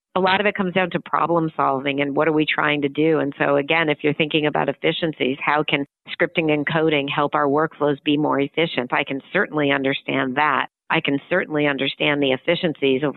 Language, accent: English, American